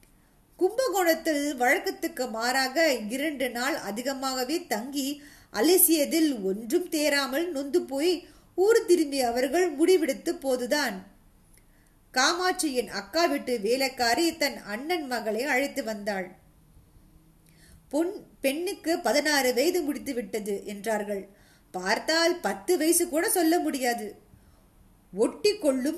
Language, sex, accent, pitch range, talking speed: Tamil, female, native, 240-335 Hz, 75 wpm